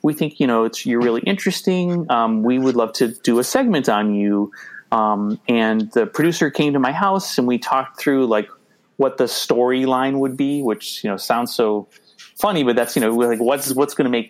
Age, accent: 30-49, American